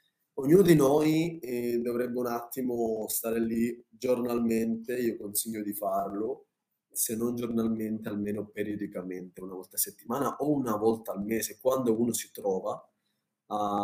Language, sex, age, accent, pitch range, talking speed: Italian, male, 20-39, native, 115-145 Hz, 145 wpm